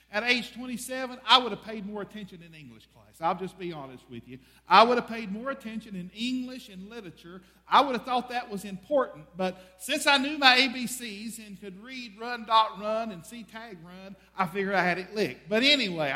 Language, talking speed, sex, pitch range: English, 220 wpm, male, 185-245 Hz